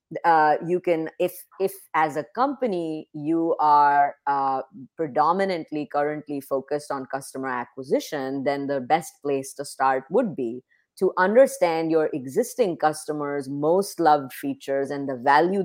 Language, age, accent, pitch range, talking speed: English, 30-49, Indian, 135-170 Hz, 140 wpm